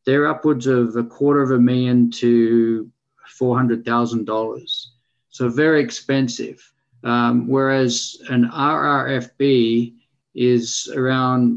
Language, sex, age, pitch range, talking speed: English, male, 50-69, 115-130 Hz, 100 wpm